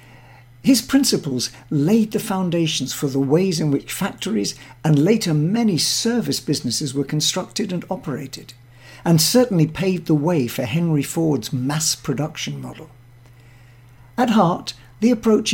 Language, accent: English, British